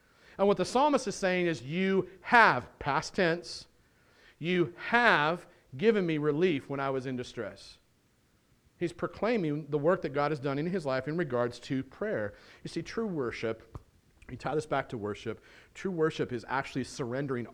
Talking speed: 175 wpm